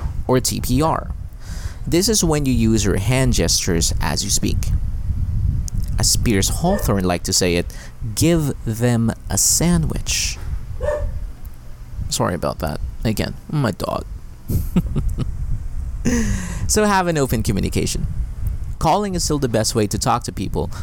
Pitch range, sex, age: 90-120 Hz, male, 30-49